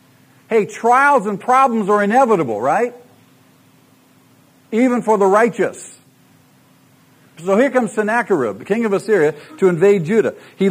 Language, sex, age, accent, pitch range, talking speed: English, male, 50-69, American, 150-205 Hz, 130 wpm